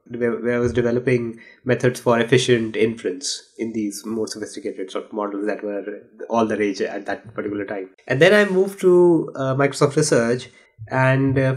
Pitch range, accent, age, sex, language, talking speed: 115-135 Hz, Indian, 20-39, male, English, 170 wpm